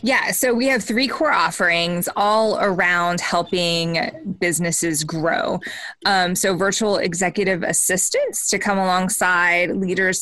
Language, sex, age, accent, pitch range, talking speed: English, female, 20-39, American, 170-210 Hz, 125 wpm